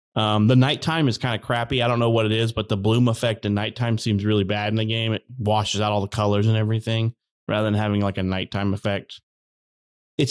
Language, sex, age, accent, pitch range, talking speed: English, male, 30-49, American, 105-130 Hz, 240 wpm